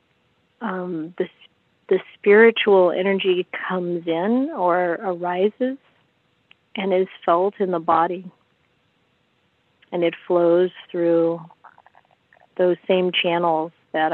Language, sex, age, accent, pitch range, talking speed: English, female, 40-59, American, 165-185 Hz, 100 wpm